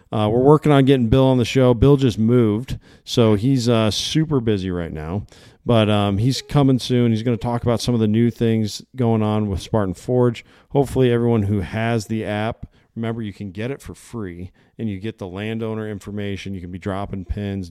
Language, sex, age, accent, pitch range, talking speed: English, male, 40-59, American, 95-110 Hz, 215 wpm